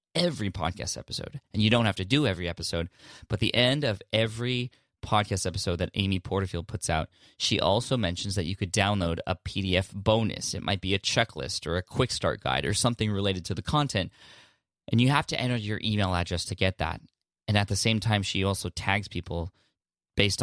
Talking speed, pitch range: 205 wpm, 90-110 Hz